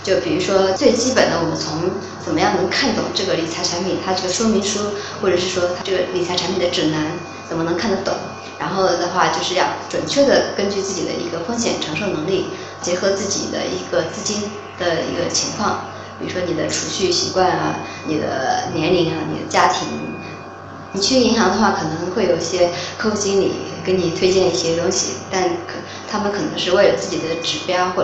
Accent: native